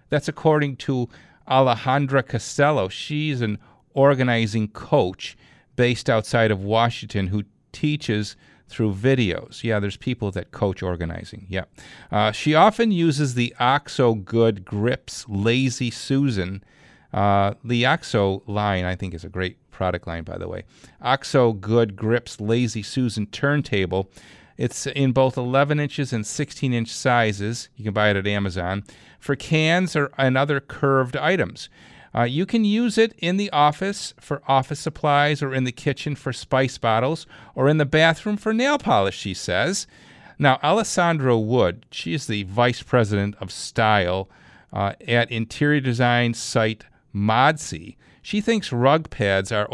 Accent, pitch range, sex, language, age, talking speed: American, 105-140 Hz, male, English, 40-59, 150 wpm